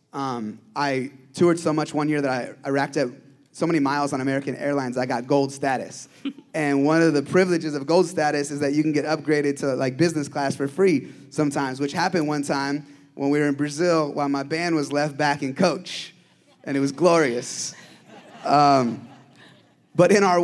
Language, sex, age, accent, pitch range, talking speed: English, male, 20-39, American, 145-180 Hz, 200 wpm